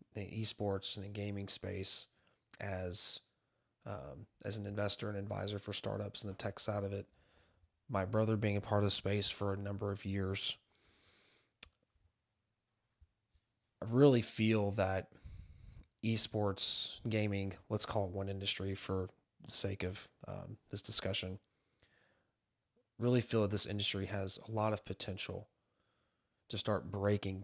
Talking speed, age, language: 140 wpm, 30-49, English